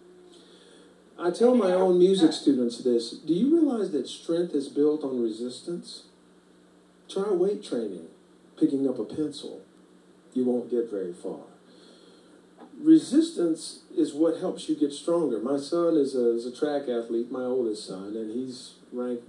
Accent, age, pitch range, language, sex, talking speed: American, 50-69, 120-170 Hz, English, male, 150 wpm